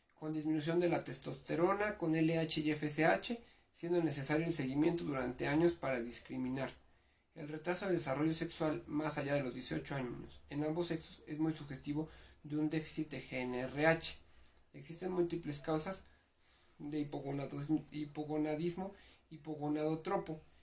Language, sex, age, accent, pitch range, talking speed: Spanish, male, 40-59, Mexican, 145-170 Hz, 130 wpm